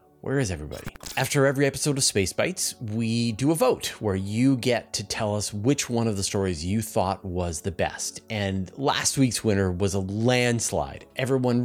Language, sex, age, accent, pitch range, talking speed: English, male, 30-49, American, 95-125 Hz, 190 wpm